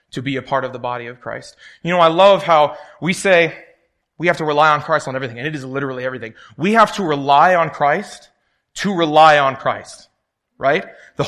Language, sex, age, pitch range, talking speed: English, male, 20-39, 135-175 Hz, 220 wpm